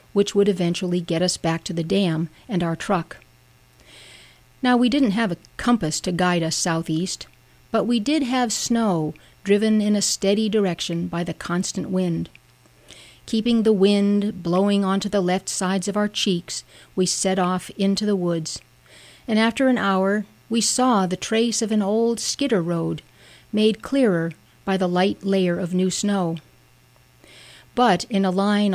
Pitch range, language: 170-215 Hz, English